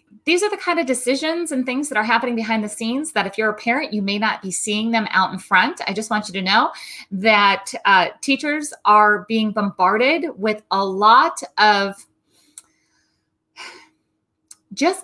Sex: female